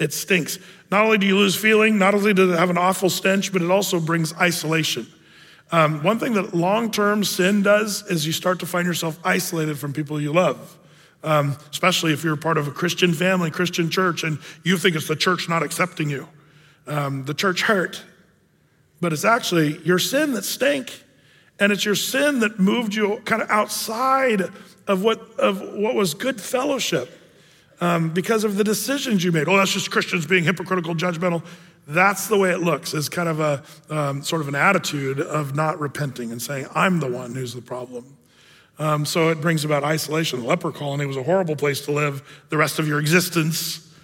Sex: male